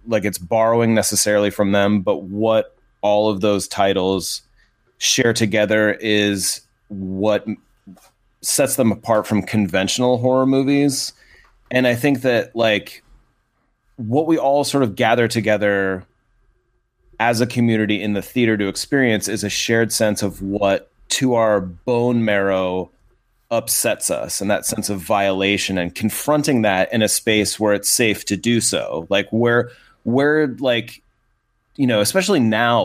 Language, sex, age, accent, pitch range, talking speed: English, male, 30-49, American, 100-120 Hz, 145 wpm